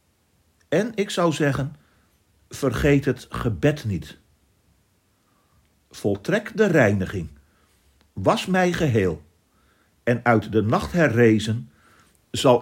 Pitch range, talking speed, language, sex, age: 90-150 Hz, 95 wpm, Dutch, male, 50-69